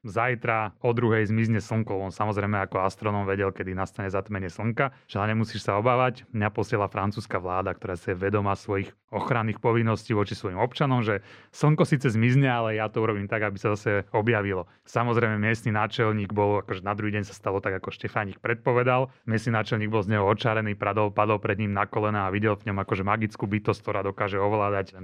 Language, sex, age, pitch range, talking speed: Slovak, male, 30-49, 105-125 Hz, 195 wpm